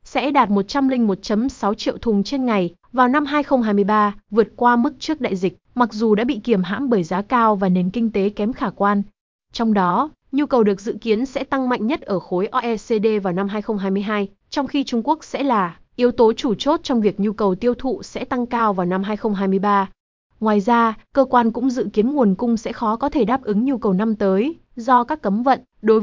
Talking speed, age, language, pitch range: 220 wpm, 20-39, Vietnamese, 200-255 Hz